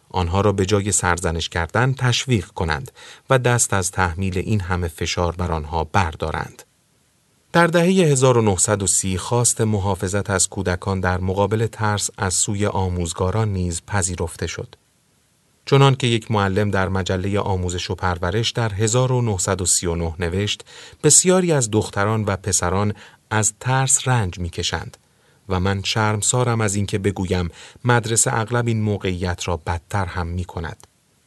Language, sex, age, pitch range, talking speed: Persian, male, 30-49, 90-115 Hz, 135 wpm